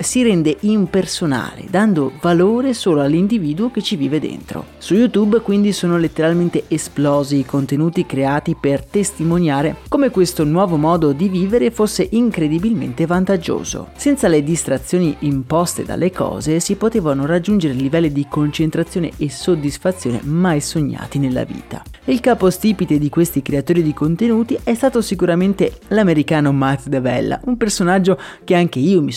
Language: Italian